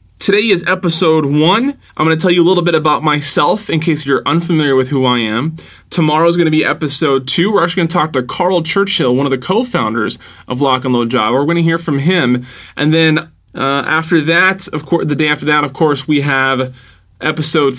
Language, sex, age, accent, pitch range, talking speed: English, male, 20-39, American, 130-165 Hz, 230 wpm